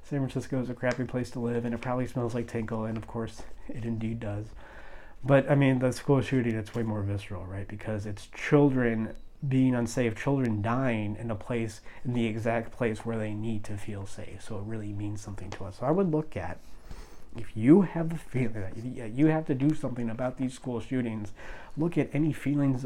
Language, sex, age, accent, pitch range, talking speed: English, male, 30-49, American, 110-130 Hz, 215 wpm